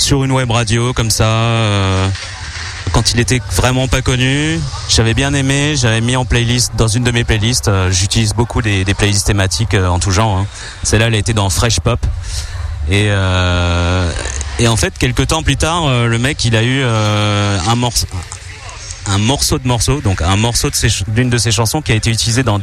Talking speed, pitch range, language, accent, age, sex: 210 wpm, 95-115 Hz, French, French, 30-49, male